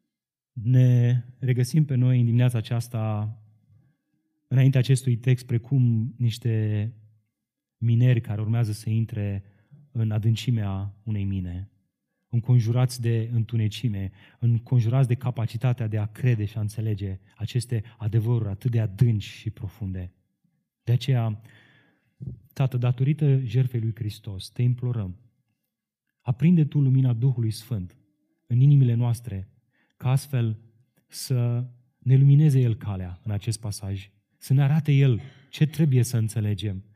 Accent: native